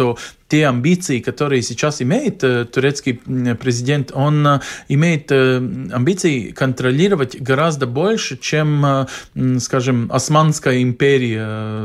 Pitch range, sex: 125-155 Hz, male